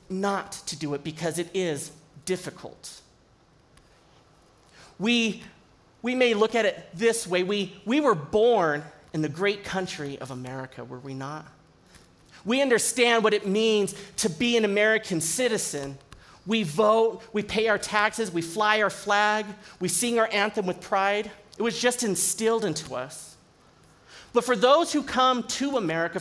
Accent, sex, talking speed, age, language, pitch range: American, male, 155 wpm, 40-59, English, 165-220 Hz